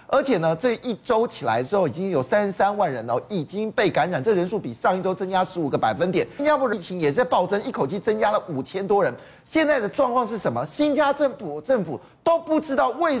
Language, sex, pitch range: Chinese, male, 180-255 Hz